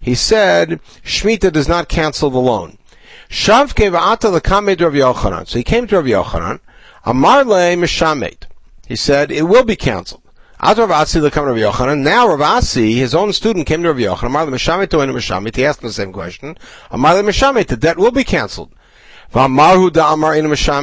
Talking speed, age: 115 wpm, 60-79